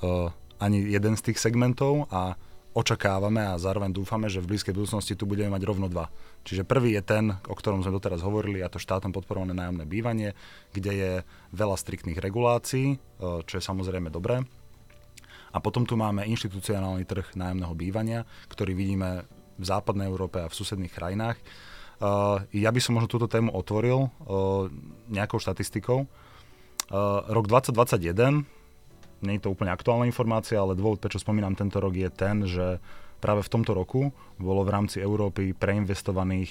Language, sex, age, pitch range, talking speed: Slovak, male, 30-49, 95-110 Hz, 165 wpm